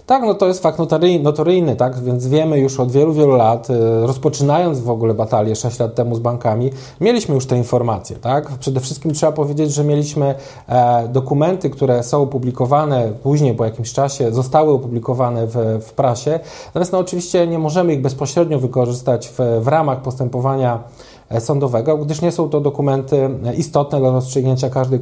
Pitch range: 125-160 Hz